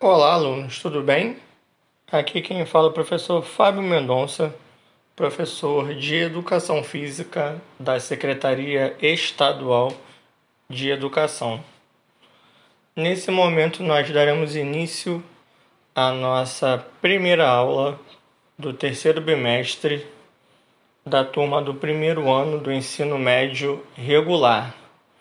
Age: 20-39